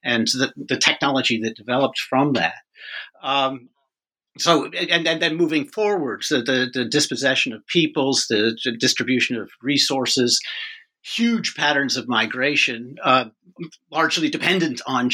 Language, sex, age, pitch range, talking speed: English, male, 50-69, 120-170 Hz, 135 wpm